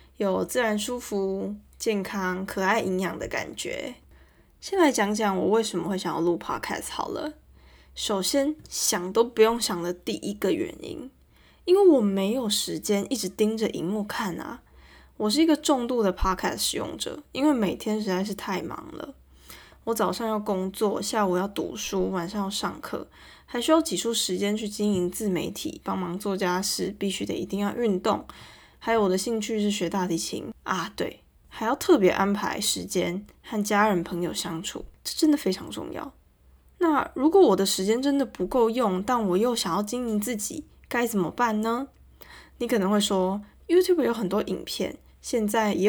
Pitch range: 190-240 Hz